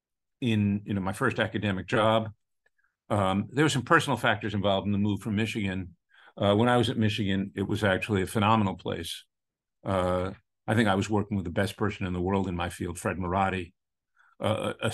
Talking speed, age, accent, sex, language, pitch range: 200 wpm, 50-69, American, male, English, 95-110 Hz